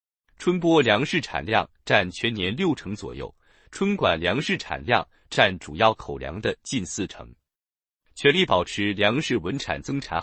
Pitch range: 105-145 Hz